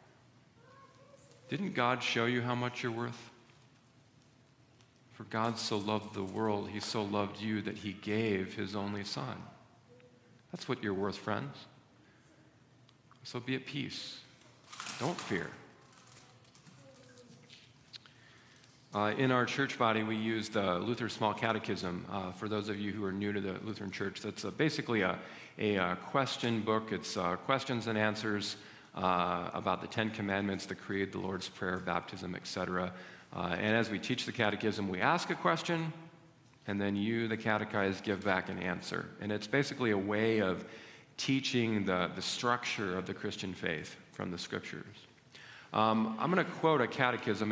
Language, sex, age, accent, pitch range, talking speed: English, male, 50-69, American, 100-125 Hz, 160 wpm